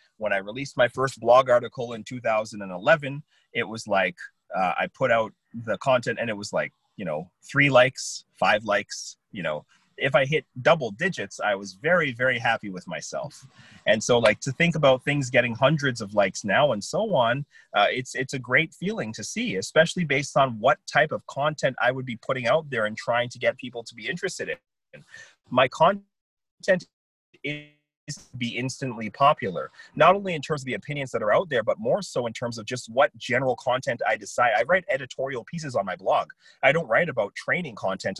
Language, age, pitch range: English, 30-49, 120-160 Hz